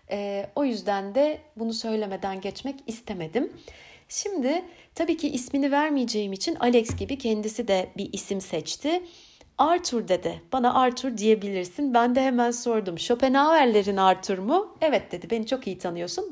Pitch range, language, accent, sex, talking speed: 195-280 Hz, Turkish, native, female, 145 wpm